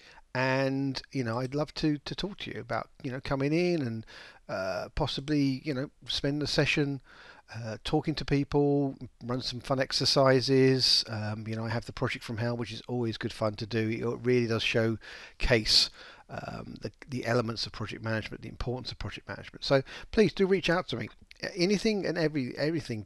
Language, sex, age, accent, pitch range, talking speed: English, male, 40-59, British, 115-145 Hz, 195 wpm